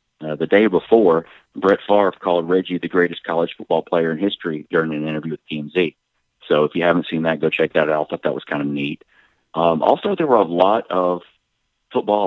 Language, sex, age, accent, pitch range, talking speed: English, male, 40-59, American, 80-95 Hz, 220 wpm